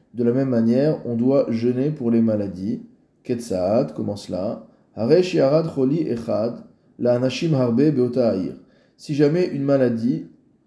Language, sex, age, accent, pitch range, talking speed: French, male, 20-39, French, 115-135 Hz, 145 wpm